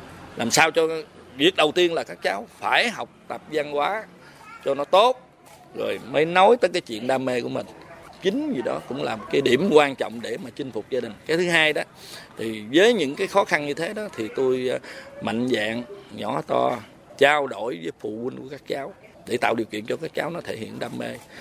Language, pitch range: Vietnamese, 125-190 Hz